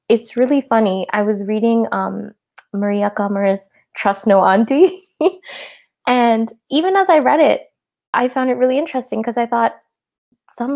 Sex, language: female, English